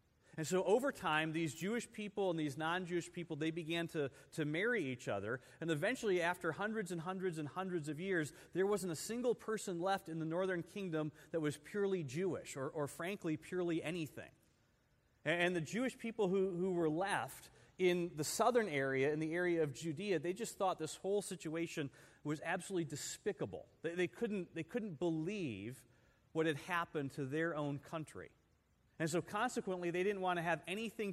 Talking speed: 185 wpm